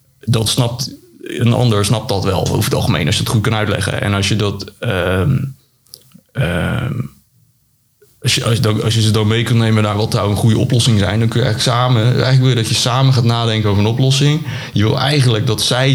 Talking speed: 235 wpm